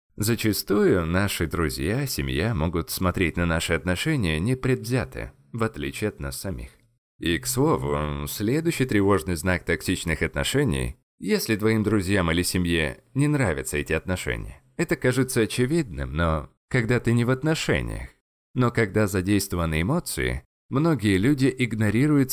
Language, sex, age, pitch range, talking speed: Russian, male, 20-39, 85-120 Hz, 130 wpm